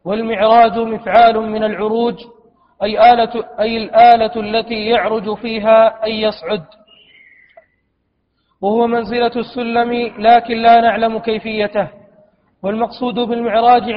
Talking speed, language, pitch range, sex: 95 wpm, Arabic, 220-235 Hz, male